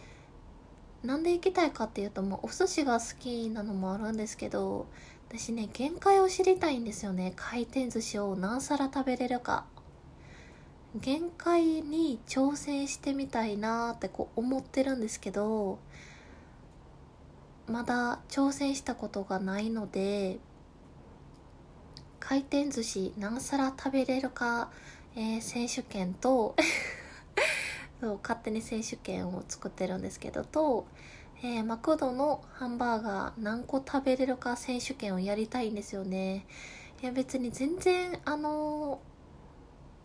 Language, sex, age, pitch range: Japanese, female, 20-39, 195-270 Hz